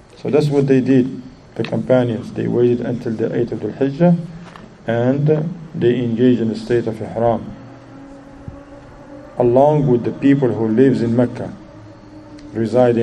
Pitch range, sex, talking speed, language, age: 115-140 Hz, male, 145 wpm, English, 50-69